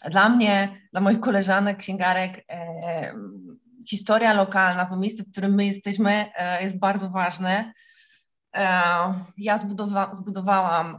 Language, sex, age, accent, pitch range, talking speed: Polish, female, 20-39, native, 185-215 Hz, 125 wpm